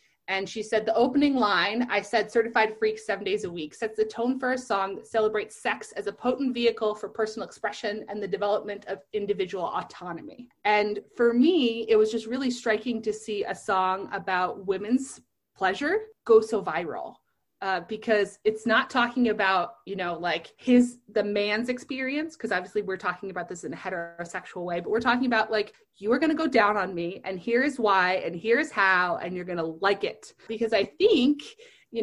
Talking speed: 200 wpm